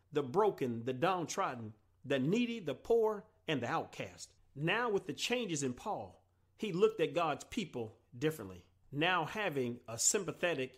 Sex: male